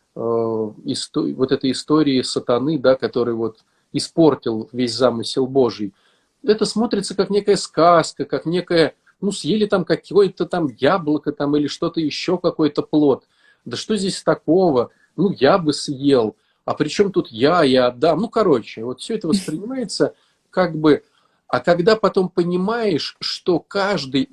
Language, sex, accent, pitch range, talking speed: Russian, male, native, 140-190 Hz, 145 wpm